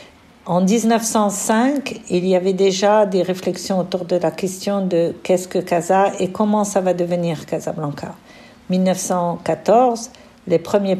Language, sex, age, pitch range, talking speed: French, female, 50-69, 170-205 Hz, 165 wpm